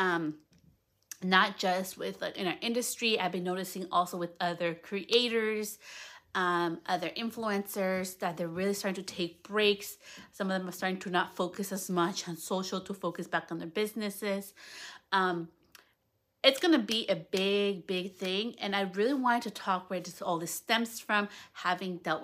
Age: 30-49